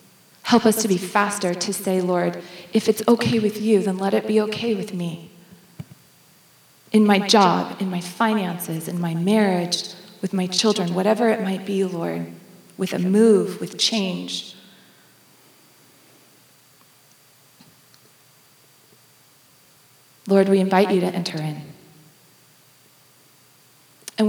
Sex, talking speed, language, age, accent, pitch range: female, 125 wpm, English, 30-49, American, 180-205 Hz